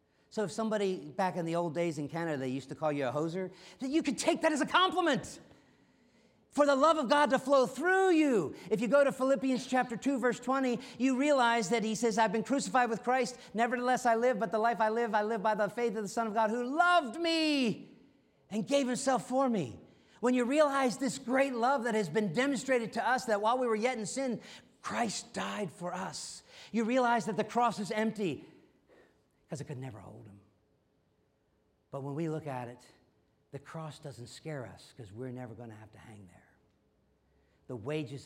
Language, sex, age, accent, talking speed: English, male, 50-69, American, 215 wpm